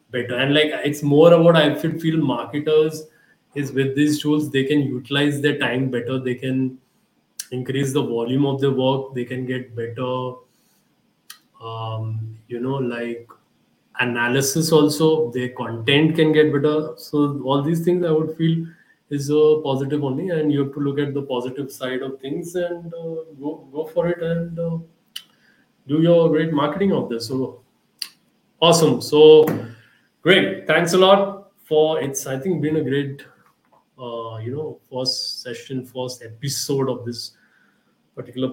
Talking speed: 160 wpm